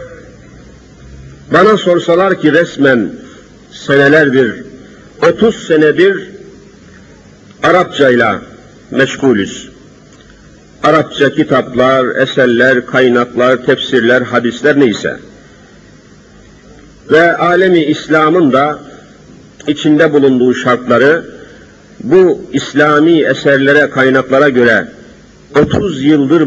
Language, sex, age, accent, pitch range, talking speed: Turkish, male, 50-69, native, 130-165 Hz, 70 wpm